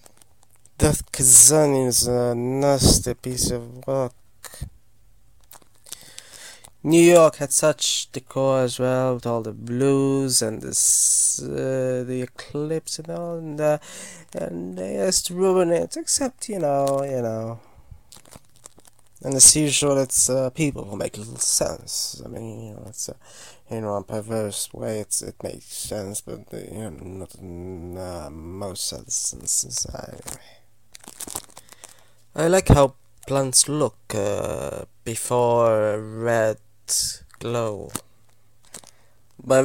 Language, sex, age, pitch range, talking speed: English, male, 20-39, 110-130 Hz, 130 wpm